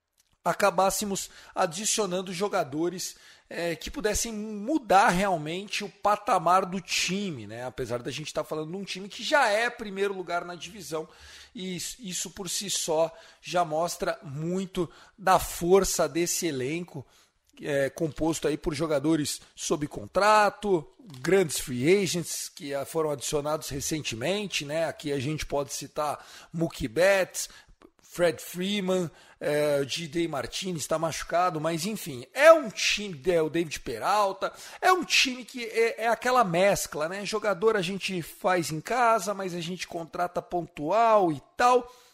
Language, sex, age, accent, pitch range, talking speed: Portuguese, male, 40-59, Brazilian, 160-205 Hz, 140 wpm